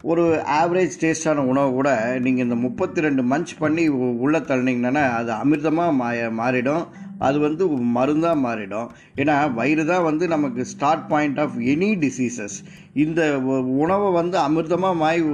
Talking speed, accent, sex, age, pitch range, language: 135 wpm, native, male, 20-39, 130-165 Hz, Tamil